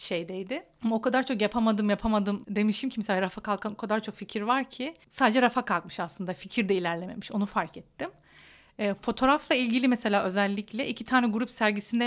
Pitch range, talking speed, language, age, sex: 195-235 Hz, 185 wpm, Turkish, 30-49, female